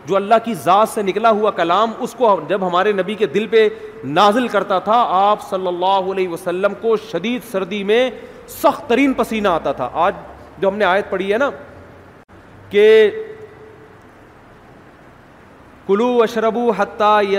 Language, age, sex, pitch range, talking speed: Urdu, 40-59, male, 175-215 Hz, 150 wpm